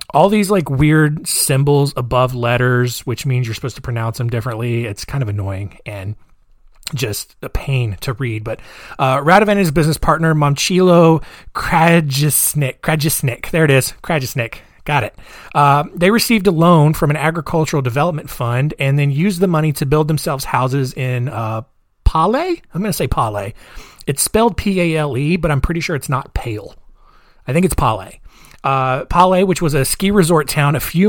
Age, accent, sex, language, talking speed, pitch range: 30-49, American, male, English, 180 wpm, 125-165 Hz